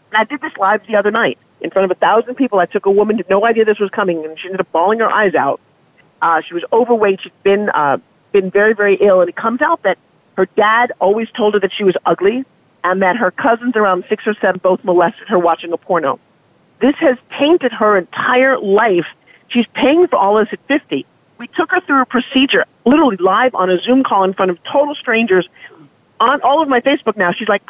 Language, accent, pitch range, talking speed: English, American, 190-250 Hz, 235 wpm